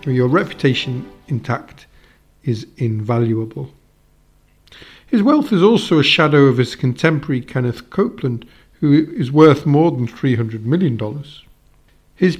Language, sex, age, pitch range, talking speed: English, male, 50-69, 125-160 Hz, 115 wpm